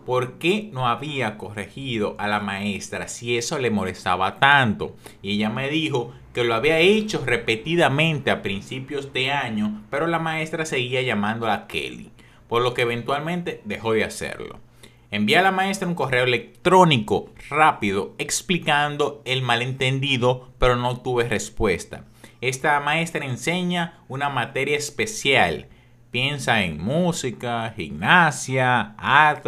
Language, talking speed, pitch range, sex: Spanish, 135 wpm, 115-155 Hz, male